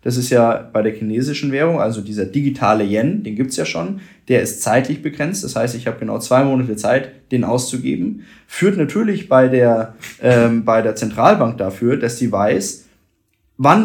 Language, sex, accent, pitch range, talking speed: German, male, German, 115-145 Hz, 185 wpm